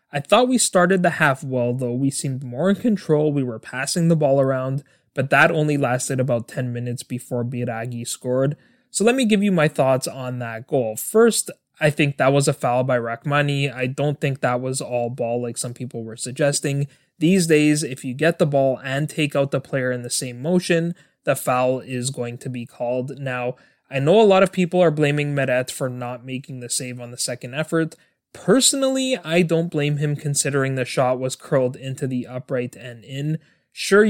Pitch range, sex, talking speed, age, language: 125-160 Hz, male, 210 wpm, 20-39, English